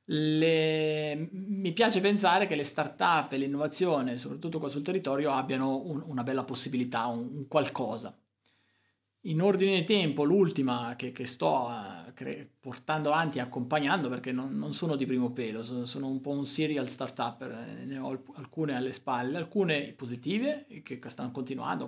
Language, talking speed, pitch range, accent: Italian, 155 wpm, 130-170 Hz, native